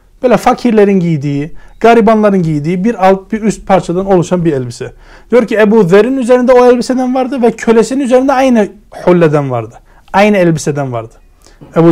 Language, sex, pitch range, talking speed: Turkish, male, 160-220 Hz, 150 wpm